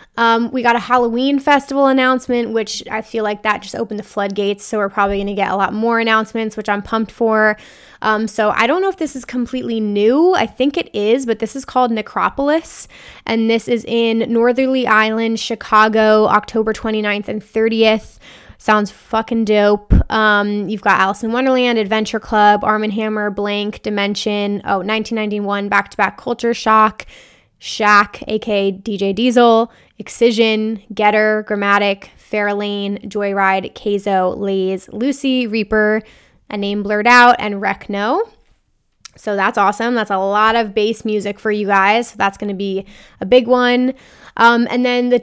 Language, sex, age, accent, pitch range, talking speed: English, female, 10-29, American, 210-235 Hz, 165 wpm